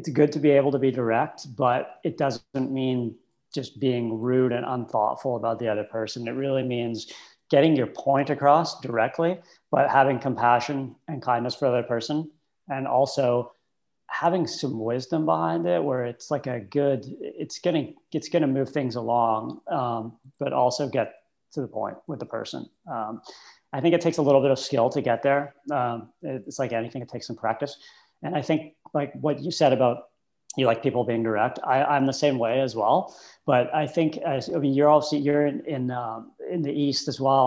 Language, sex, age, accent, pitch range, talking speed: English, male, 40-59, American, 125-150 Hz, 200 wpm